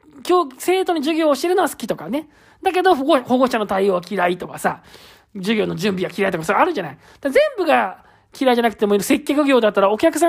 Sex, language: male, Japanese